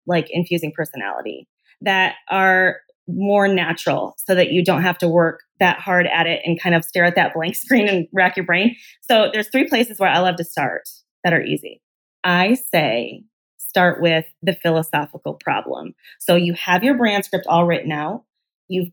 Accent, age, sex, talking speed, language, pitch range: American, 20-39, female, 185 wpm, English, 170-200 Hz